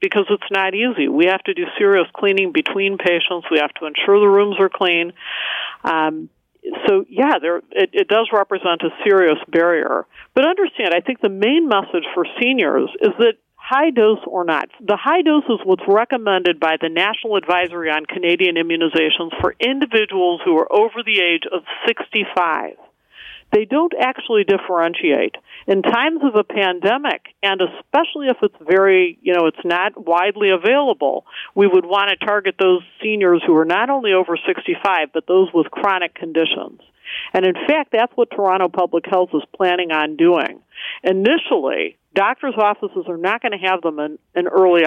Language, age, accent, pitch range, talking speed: English, 50-69, American, 170-230 Hz, 175 wpm